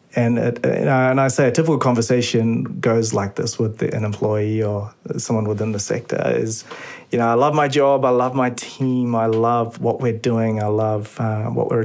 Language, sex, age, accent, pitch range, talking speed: English, male, 30-49, Australian, 110-125 Hz, 210 wpm